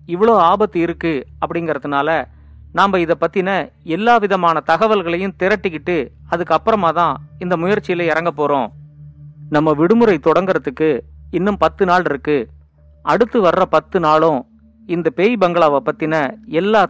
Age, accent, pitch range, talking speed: 50-69, native, 145-185 Hz, 120 wpm